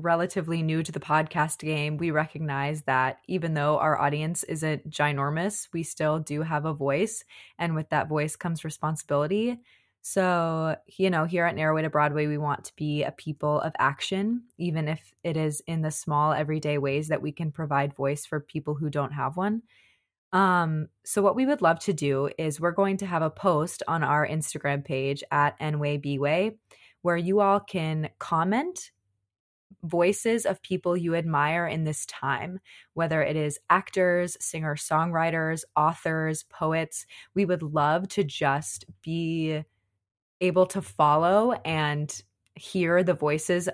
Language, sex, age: English, female, 20-39